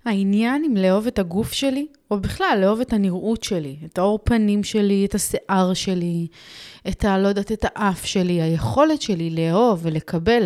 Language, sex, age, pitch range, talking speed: Hebrew, female, 30-49, 170-220 Hz, 160 wpm